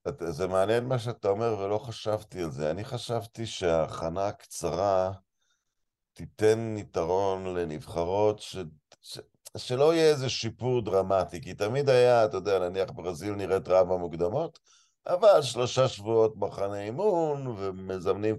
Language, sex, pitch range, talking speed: Hebrew, male, 95-125 Hz, 125 wpm